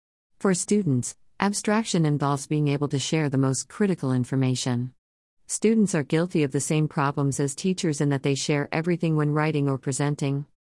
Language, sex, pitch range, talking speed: English, female, 130-155 Hz, 170 wpm